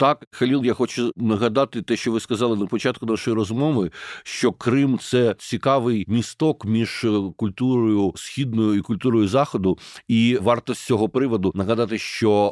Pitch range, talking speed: 105-120 Hz, 155 wpm